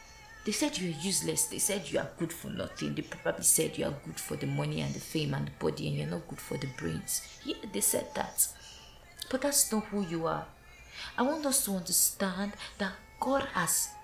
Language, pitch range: English, 175-245 Hz